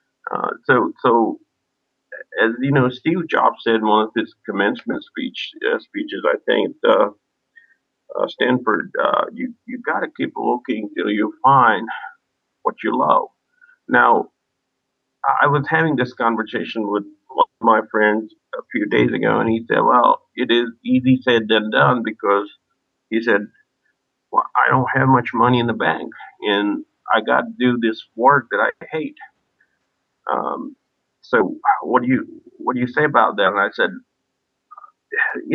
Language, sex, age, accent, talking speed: English, male, 50-69, American, 165 wpm